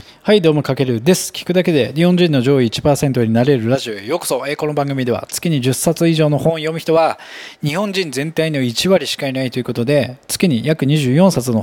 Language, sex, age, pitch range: Japanese, male, 20-39, 120-175 Hz